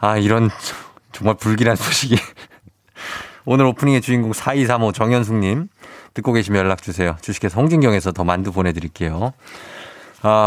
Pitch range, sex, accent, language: 100-135 Hz, male, native, Korean